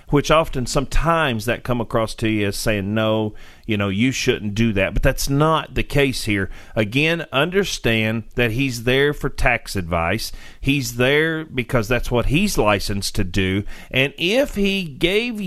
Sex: male